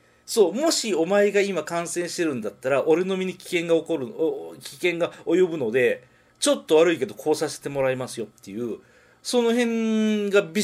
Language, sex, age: Japanese, male, 40-59